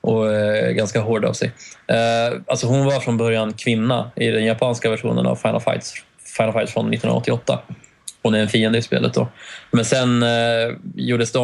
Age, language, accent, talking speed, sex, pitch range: 20-39, Swedish, native, 175 wpm, male, 105-115 Hz